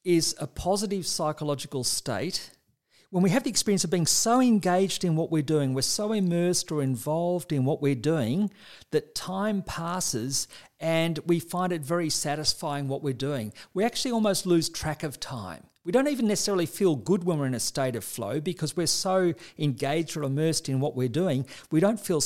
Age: 50-69